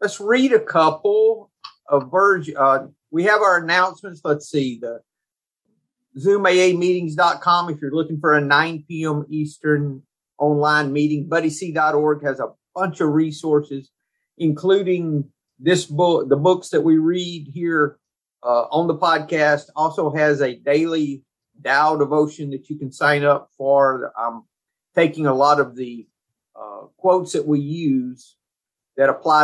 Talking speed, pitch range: 145 wpm, 140-170 Hz